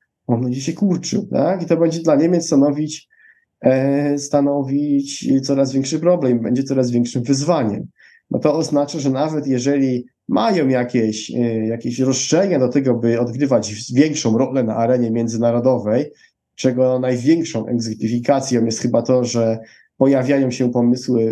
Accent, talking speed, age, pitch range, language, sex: native, 135 wpm, 20-39, 115-135 Hz, Polish, male